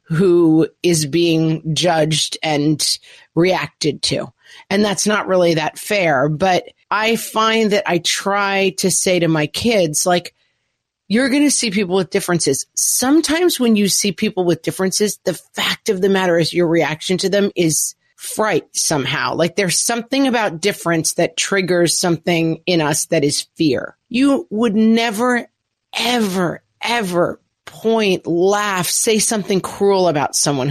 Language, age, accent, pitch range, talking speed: English, 40-59, American, 165-215 Hz, 150 wpm